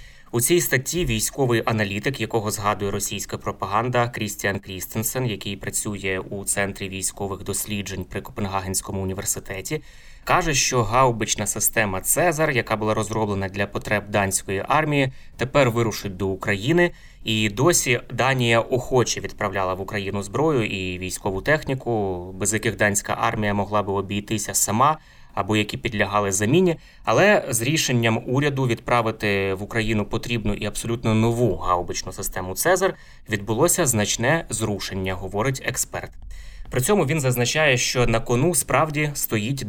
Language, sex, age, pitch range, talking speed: Ukrainian, male, 20-39, 100-125 Hz, 130 wpm